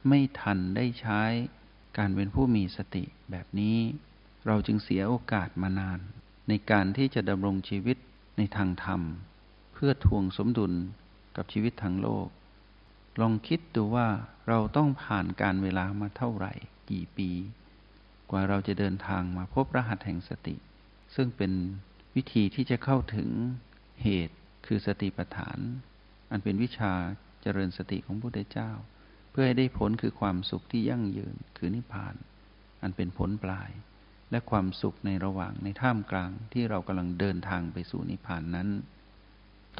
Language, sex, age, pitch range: Thai, male, 60-79, 95-120 Hz